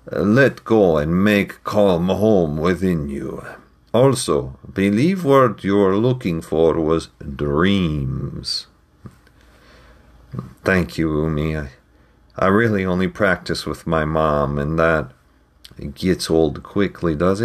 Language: English